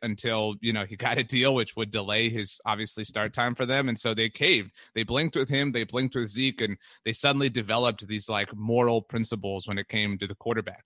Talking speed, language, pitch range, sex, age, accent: 230 wpm, English, 110-135 Hz, male, 30-49, American